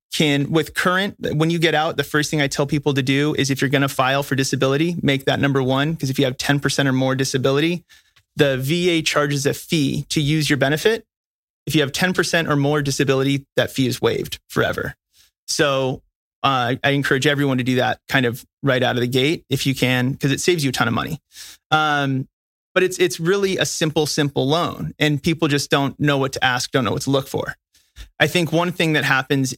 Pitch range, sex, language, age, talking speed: 135-160 Hz, male, English, 30-49, 225 wpm